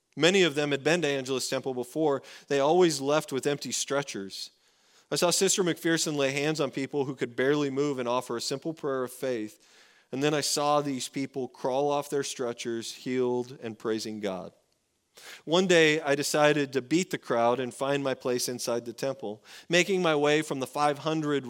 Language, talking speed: English, 195 wpm